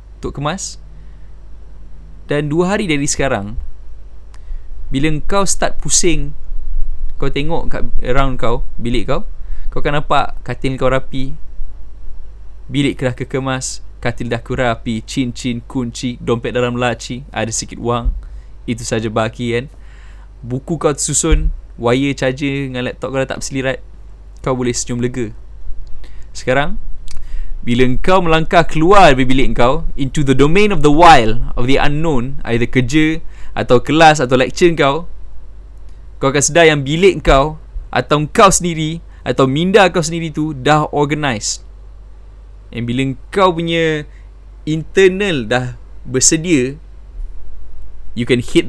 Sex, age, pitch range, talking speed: male, 20-39, 100-145 Hz, 130 wpm